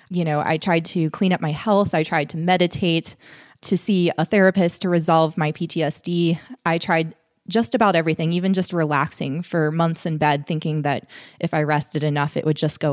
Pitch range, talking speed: 155-180 Hz, 200 wpm